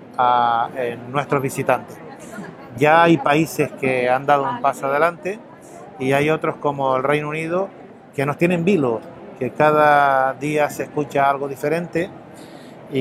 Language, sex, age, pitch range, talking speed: Spanish, male, 30-49, 130-150 Hz, 150 wpm